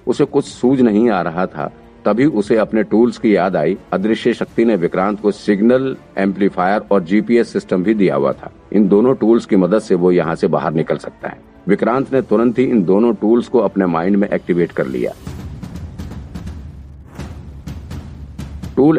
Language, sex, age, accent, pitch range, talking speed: Hindi, male, 50-69, native, 95-115 Hz, 170 wpm